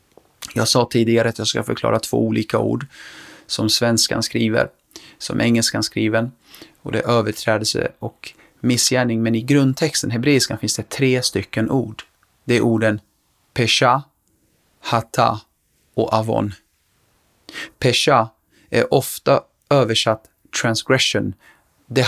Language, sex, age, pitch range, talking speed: Swedish, male, 30-49, 110-125 Hz, 120 wpm